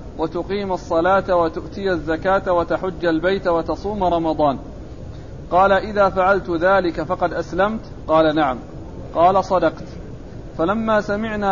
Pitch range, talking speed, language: 170-195 Hz, 105 wpm, Arabic